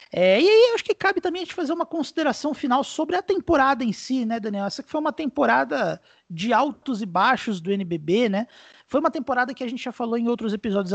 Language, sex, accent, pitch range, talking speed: Portuguese, male, Brazilian, 180-240 Hz, 235 wpm